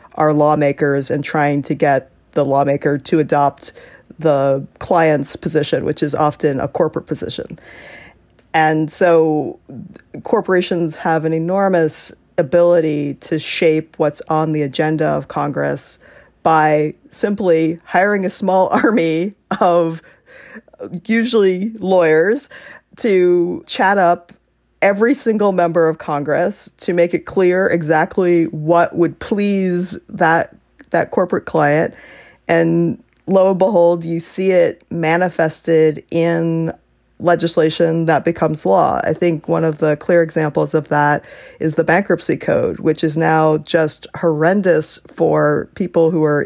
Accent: American